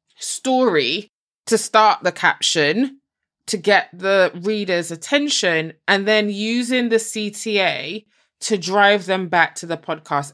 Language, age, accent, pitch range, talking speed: English, 20-39, British, 170-215 Hz, 130 wpm